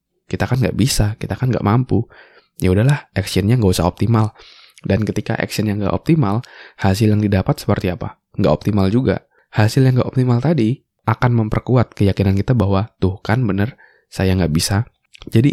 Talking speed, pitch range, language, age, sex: 170 wpm, 95-125 Hz, Indonesian, 20-39, male